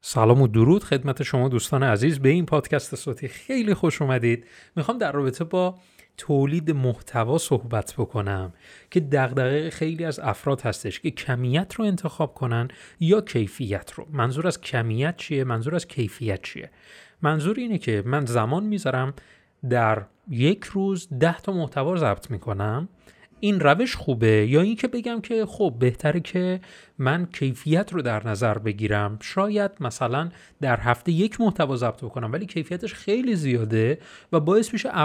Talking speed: 155 wpm